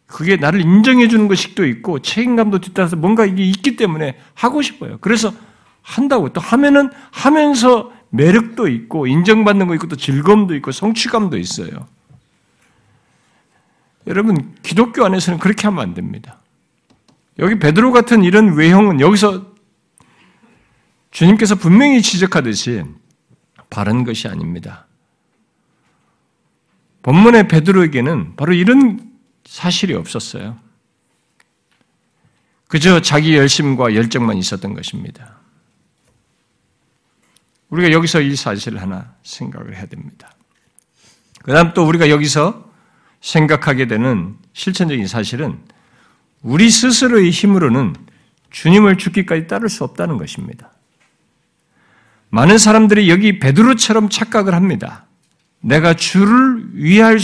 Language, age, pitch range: Korean, 50-69, 155-220 Hz